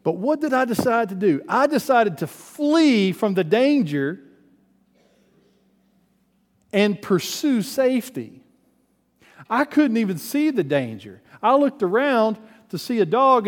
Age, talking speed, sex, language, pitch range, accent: 50-69, 135 wpm, male, English, 140-205 Hz, American